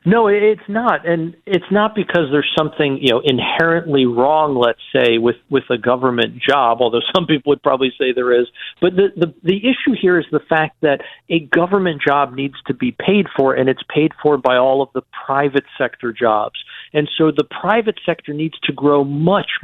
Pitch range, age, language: 135-175 Hz, 50-69, English